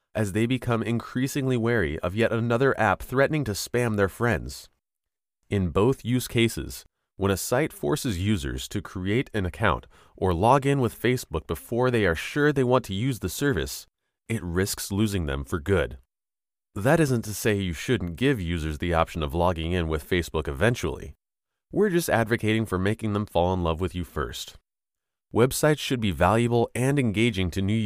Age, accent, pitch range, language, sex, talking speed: 30-49, American, 90-120 Hz, English, male, 180 wpm